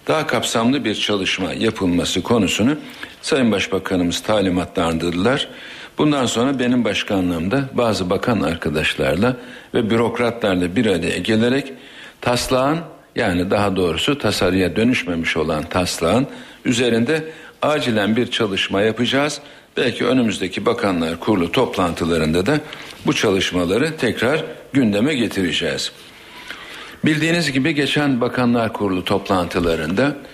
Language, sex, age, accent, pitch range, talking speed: Turkish, male, 60-79, native, 90-125 Hz, 100 wpm